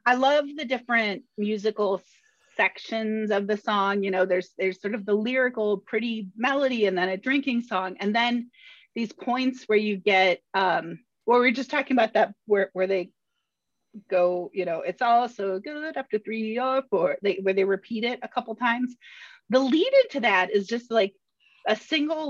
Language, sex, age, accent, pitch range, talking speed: English, female, 30-49, American, 200-260 Hz, 185 wpm